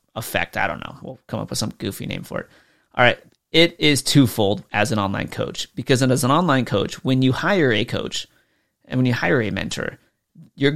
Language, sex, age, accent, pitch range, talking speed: English, male, 30-49, American, 110-140 Hz, 220 wpm